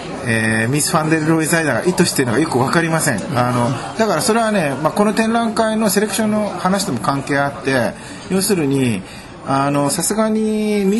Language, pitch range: Japanese, 130-180 Hz